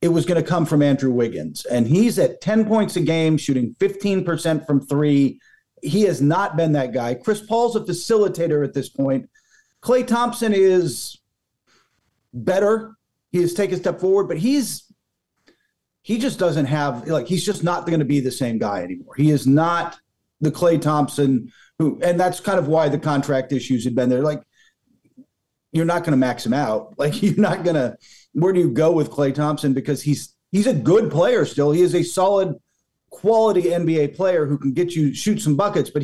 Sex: male